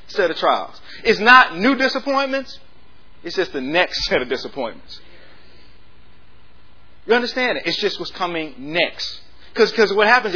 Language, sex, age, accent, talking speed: English, male, 30-49, American, 145 wpm